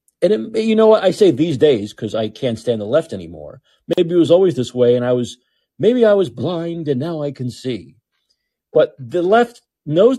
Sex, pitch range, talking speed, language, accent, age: male, 125-195 Hz, 225 wpm, English, American, 50-69